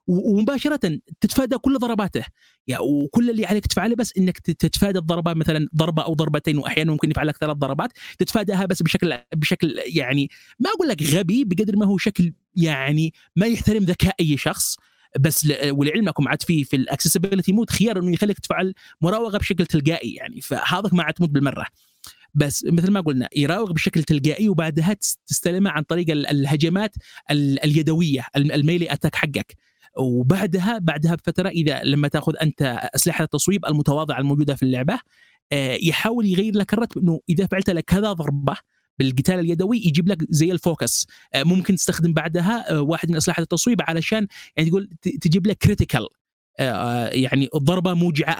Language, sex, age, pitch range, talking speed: Arabic, male, 30-49, 150-195 Hz, 150 wpm